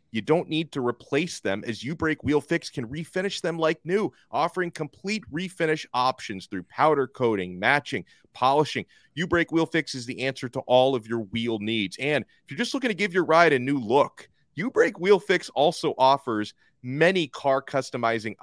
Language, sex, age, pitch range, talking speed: English, male, 30-49, 110-140 Hz, 180 wpm